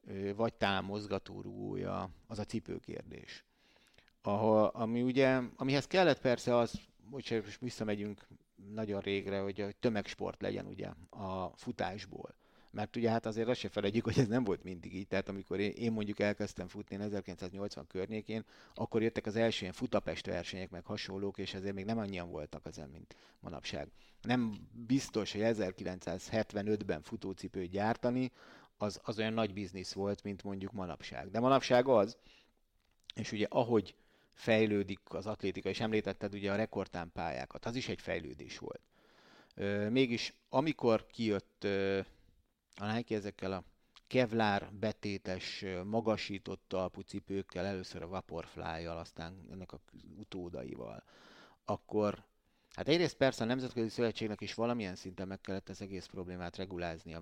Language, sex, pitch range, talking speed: Hungarian, male, 95-115 Hz, 135 wpm